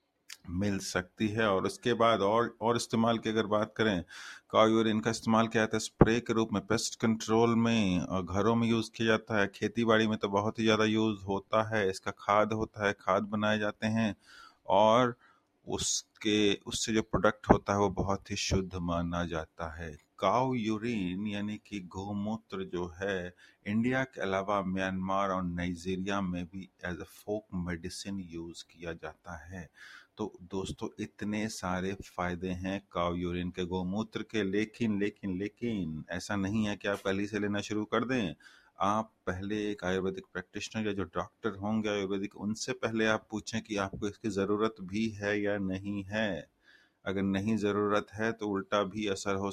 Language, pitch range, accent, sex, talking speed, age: English, 95-110 Hz, Indian, male, 165 wpm, 30-49